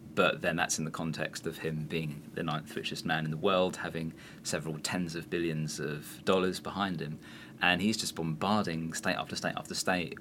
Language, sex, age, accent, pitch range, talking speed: English, male, 30-49, British, 80-100 Hz, 200 wpm